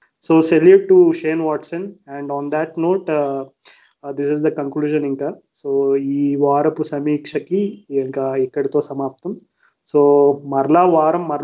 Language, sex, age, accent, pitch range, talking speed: Telugu, male, 20-39, native, 140-155 Hz, 120 wpm